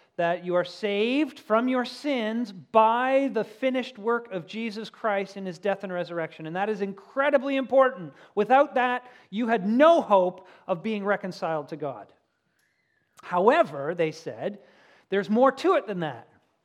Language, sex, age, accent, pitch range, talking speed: English, male, 40-59, American, 180-240 Hz, 160 wpm